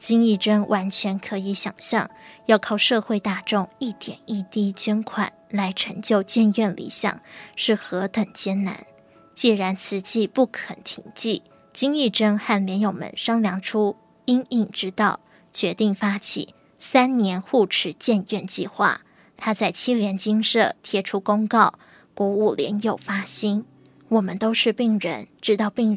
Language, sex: Chinese, female